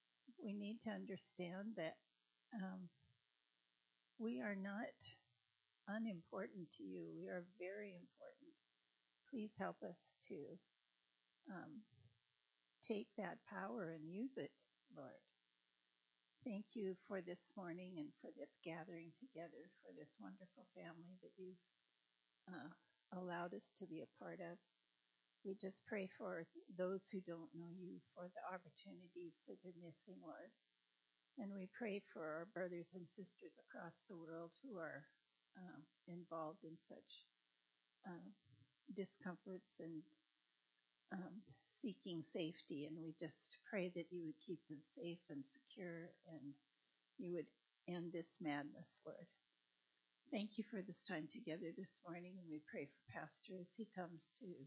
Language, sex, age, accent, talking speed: English, female, 60-79, American, 140 wpm